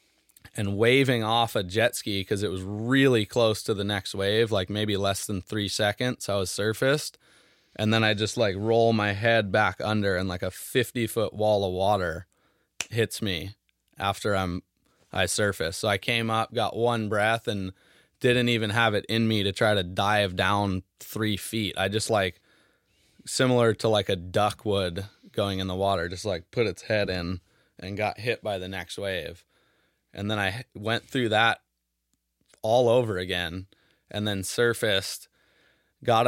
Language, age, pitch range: English, 20-39, 95-115 Hz